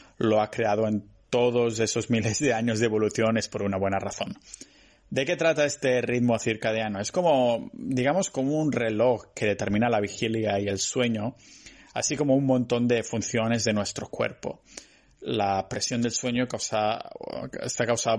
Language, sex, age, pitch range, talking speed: Spanish, male, 30-49, 105-130 Hz, 165 wpm